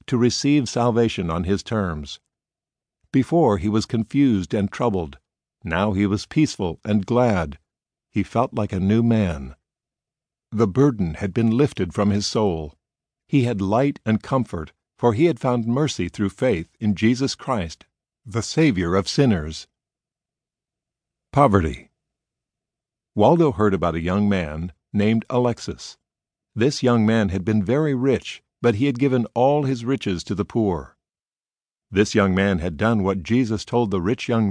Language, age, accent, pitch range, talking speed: English, 60-79, American, 95-120 Hz, 150 wpm